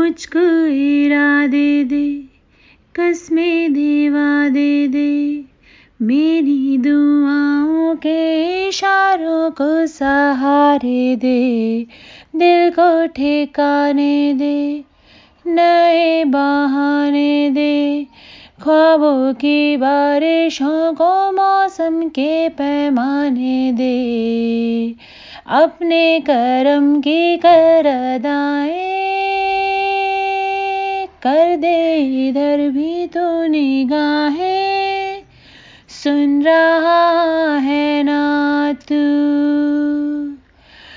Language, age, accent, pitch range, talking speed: Hindi, 30-49, native, 285-330 Hz, 65 wpm